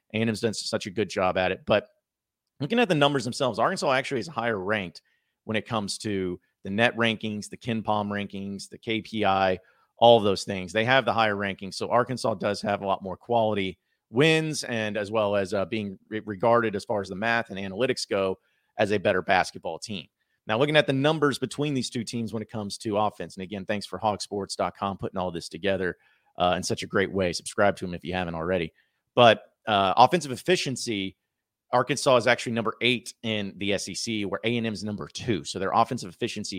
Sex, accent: male, American